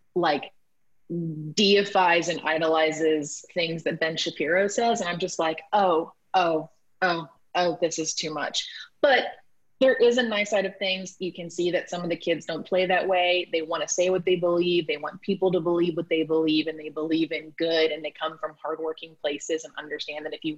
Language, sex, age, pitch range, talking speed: English, female, 20-39, 160-190 Hz, 210 wpm